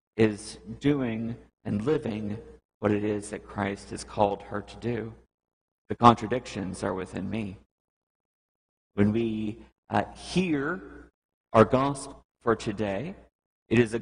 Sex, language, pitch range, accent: male, English, 100-125 Hz, American